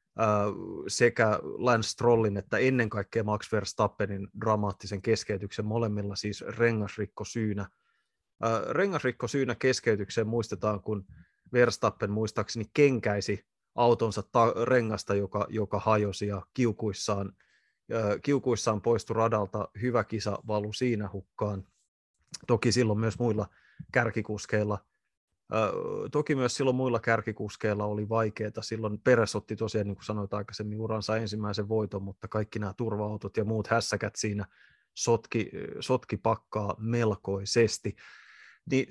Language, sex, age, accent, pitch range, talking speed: Finnish, male, 20-39, native, 105-120 Hz, 115 wpm